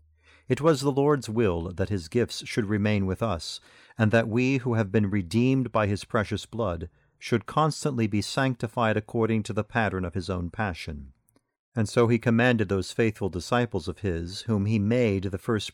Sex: male